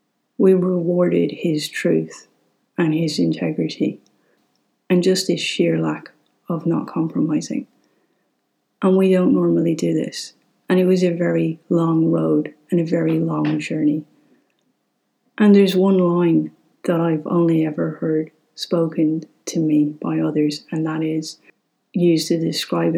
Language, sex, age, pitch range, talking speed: English, female, 40-59, 155-185 Hz, 140 wpm